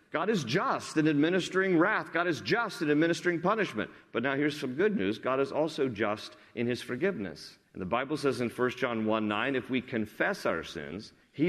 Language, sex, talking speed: English, male, 210 wpm